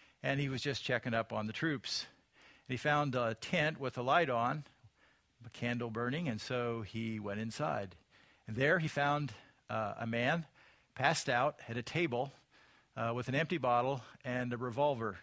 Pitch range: 110-135 Hz